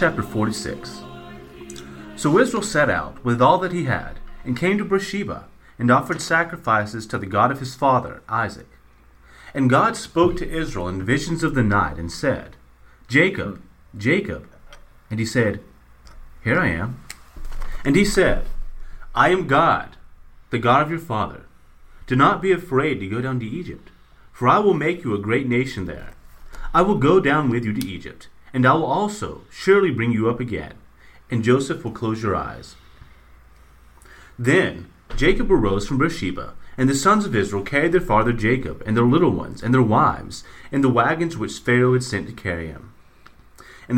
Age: 30-49